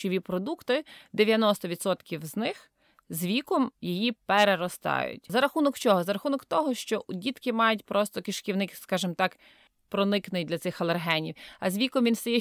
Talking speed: 150 wpm